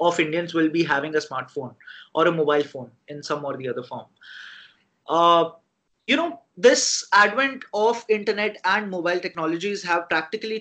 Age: 30-49